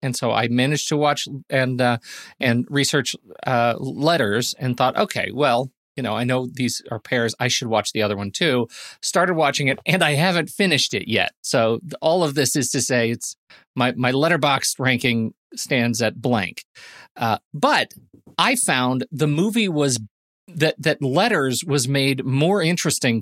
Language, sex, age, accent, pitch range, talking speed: English, male, 40-59, American, 120-145 Hz, 175 wpm